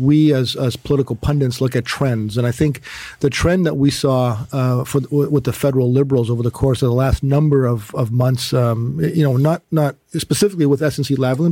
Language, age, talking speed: English, 40-59, 220 wpm